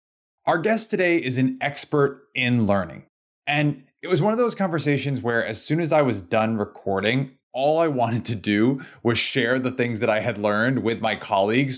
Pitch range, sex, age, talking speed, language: 110-140 Hz, male, 20-39, 200 wpm, English